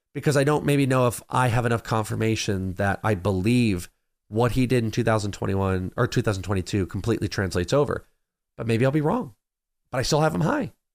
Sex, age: male, 30-49